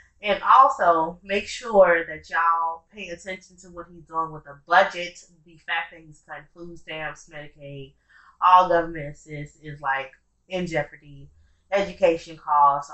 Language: English